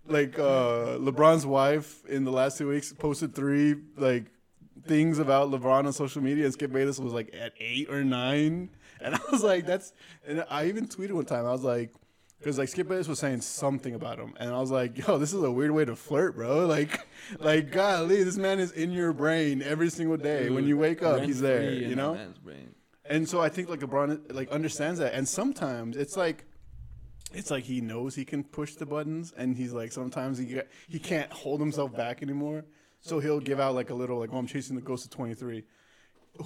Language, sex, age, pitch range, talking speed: English, male, 20-39, 125-155 Hz, 215 wpm